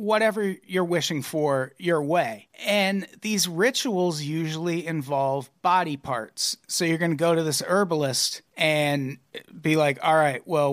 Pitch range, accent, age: 140-180 Hz, American, 40-59